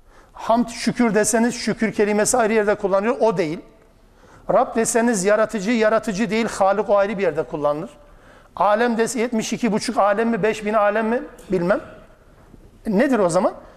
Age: 60-79